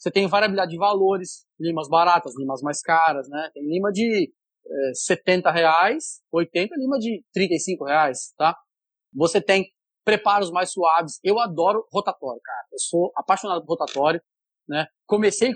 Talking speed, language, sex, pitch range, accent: 140 wpm, Portuguese, male, 165-205 Hz, Brazilian